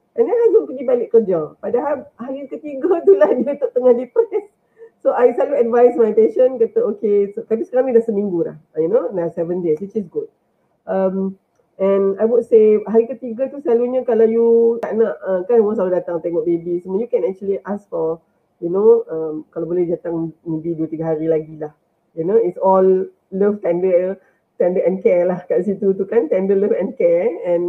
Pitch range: 190-315 Hz